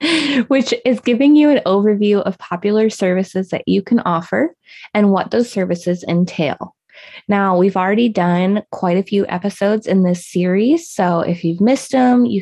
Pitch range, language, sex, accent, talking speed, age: 180-220 Hz, English, female, American, 170 wpm, 20-39